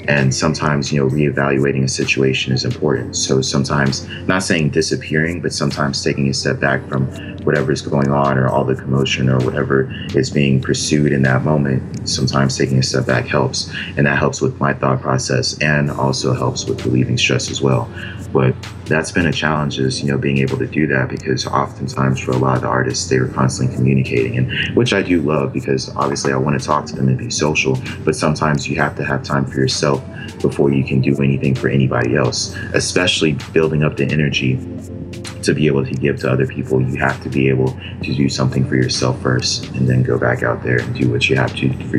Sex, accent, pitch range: male, American, 65-70 Hz